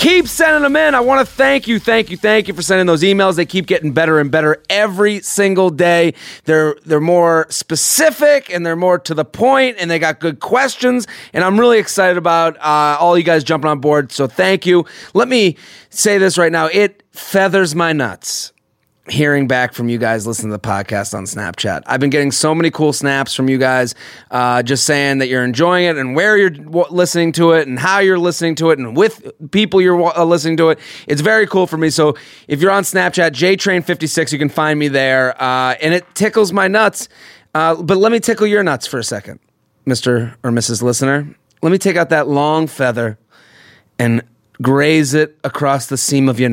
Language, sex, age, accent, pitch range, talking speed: English, male, 30-49, American, 135-190 Hz, 210 wpm